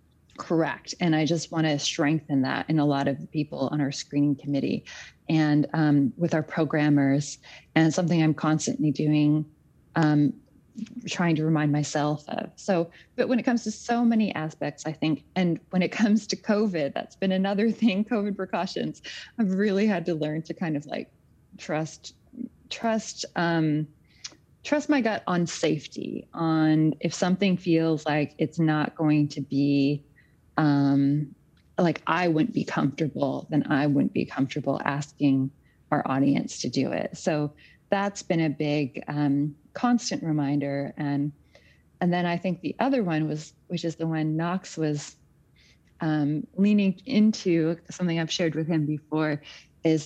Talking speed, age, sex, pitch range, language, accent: 160 wpm, 30-49, female, 150-180 Hz, English, American